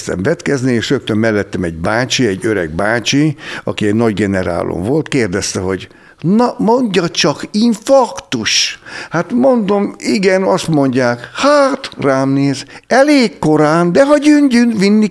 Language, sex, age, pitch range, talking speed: Hungarian, male, 60-79, 105-160 Hz, 135 wpm